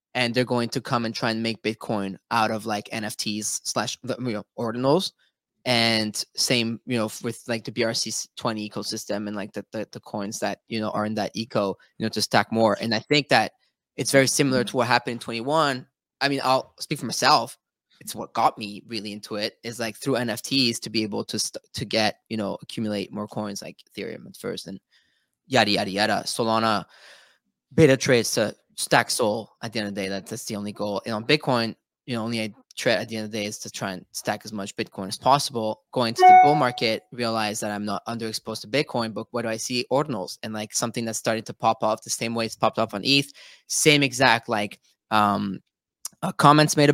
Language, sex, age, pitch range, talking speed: English, male, 20-39, 105-125 Hz, 220 wpm